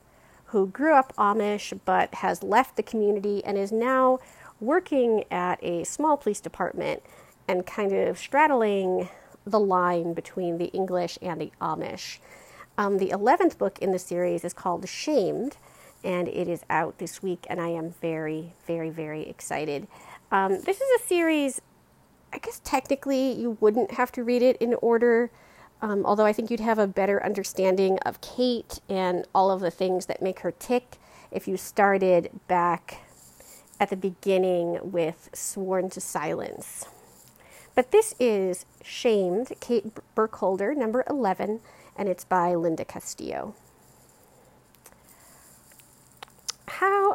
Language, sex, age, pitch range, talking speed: English, female, 40-59, 180-245 Hz, 145 wpm